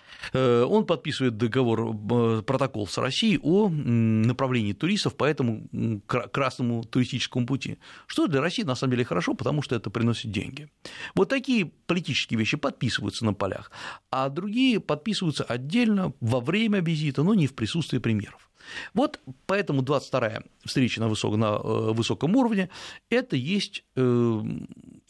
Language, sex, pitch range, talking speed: Russian, male, 120-180 Hz, 135 wpm